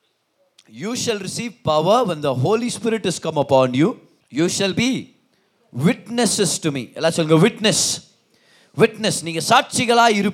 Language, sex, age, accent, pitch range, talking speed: Tamil, male, 30-49, native, 160-230 Hz, 140 wpm